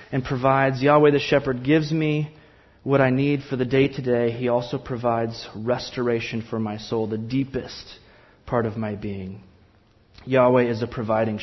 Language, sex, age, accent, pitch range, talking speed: English, male, 30-49, American, 120-155 Hz, 170 wpm